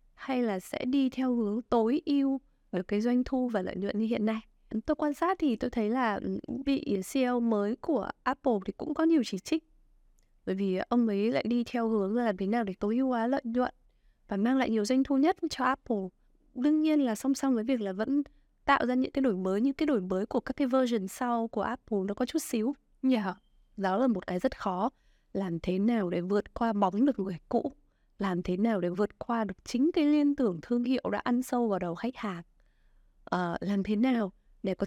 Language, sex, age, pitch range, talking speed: Vietnamese, female, 20-39, 205-265 Hz, 235 wpm